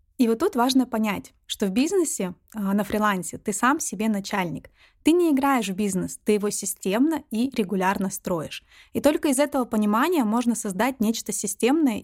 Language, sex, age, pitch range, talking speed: Russian, female, 20-39, 200-255 Hz, 170 wpm